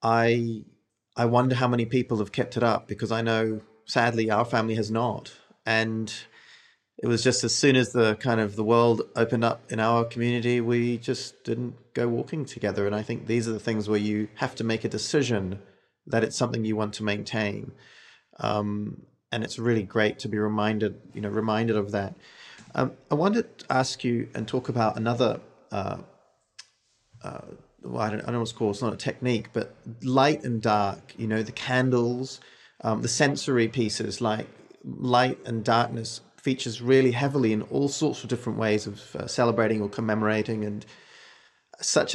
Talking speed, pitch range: 190 wpm, 110-125 Hz